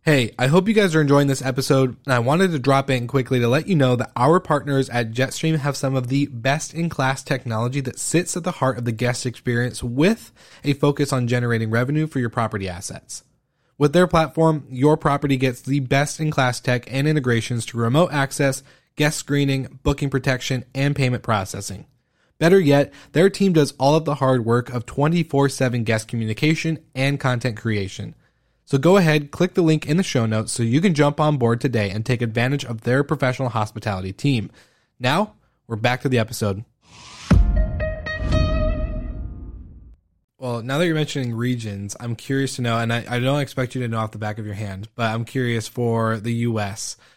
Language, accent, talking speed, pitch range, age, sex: English, American, 190 wpm, 115-145 Hz, 20-39, male